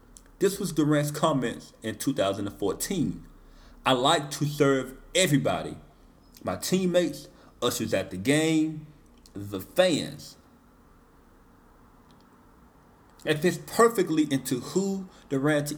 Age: 40-59